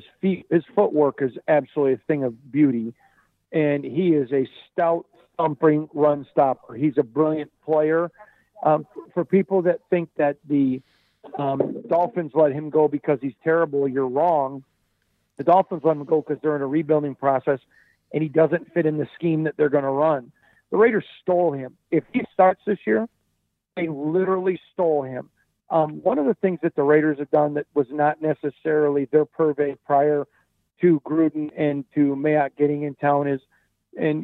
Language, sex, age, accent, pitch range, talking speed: English, male, 50-69, American, 145-165 Hz, 175 wpm